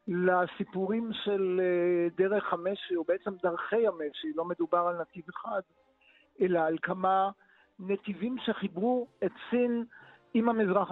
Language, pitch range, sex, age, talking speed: Hebrew, 185-230 Hz, male, 50-69, 120 wpm